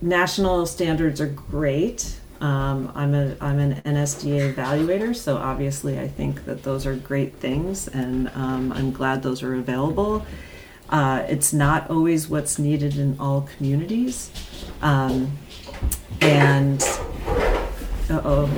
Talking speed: 125 wpm